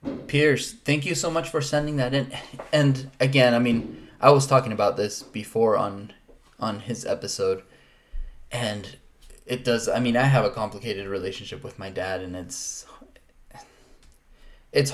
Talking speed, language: 155 wpm, English